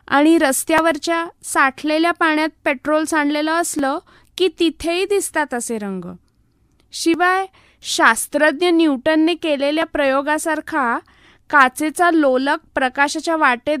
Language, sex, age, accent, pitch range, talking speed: English, female, 20-39, Indian, 275-360 Hz, 90 wpm